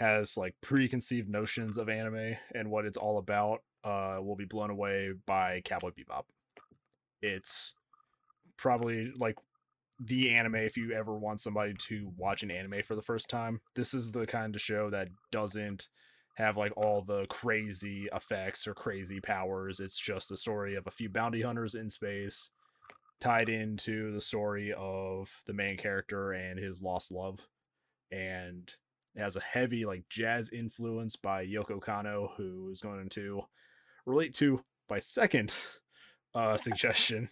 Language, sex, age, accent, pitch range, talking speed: English, male, 20-39, American, 95-115 Hz, 155 wpm